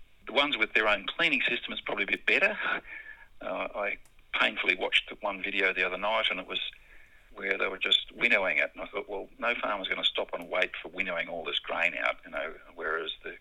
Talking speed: 230 wpm